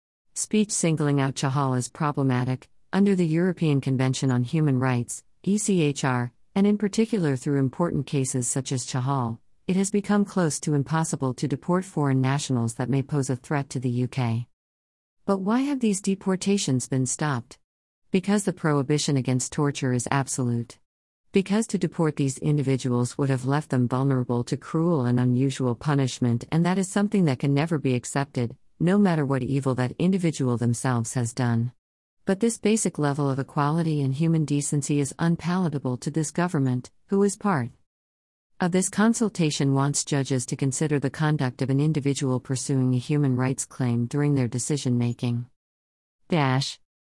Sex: female